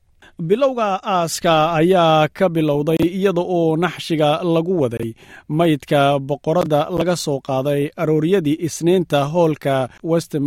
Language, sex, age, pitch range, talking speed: Finnish, male, 40-59, 135-170 Hz, 125 wpm